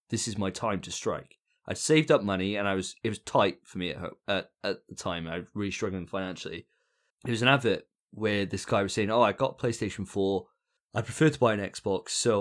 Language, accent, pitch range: English, British, 95-120 Hz